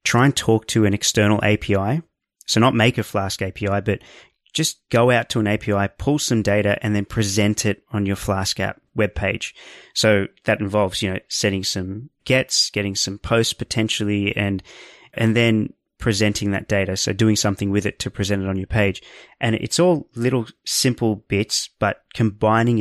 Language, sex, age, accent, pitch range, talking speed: English, male, 20-39, Australian, 100-115 Hz, 185 wpm